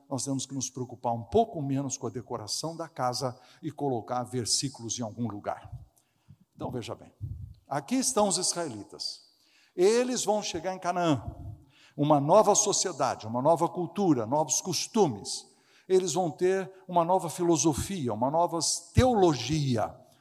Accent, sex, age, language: Brazilian, male, 60-79, Portuguese